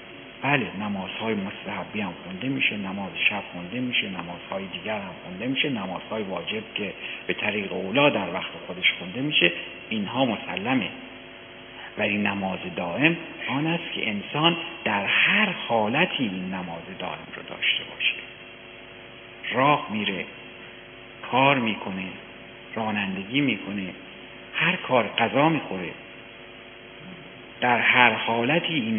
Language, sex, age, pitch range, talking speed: Persian, male, 50-69, 95-130 Hz, 120 wpm